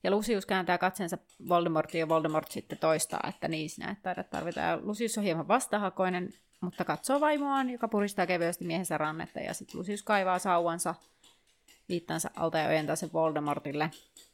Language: Finnish